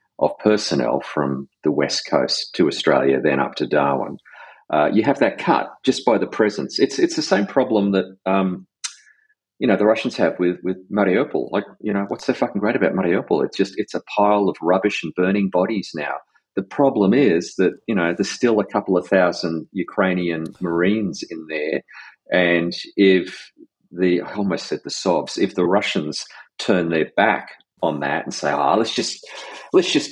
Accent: Australian